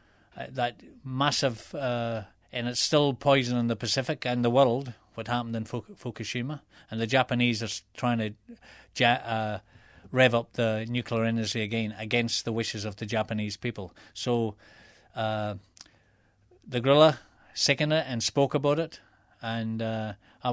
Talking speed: 145 wpm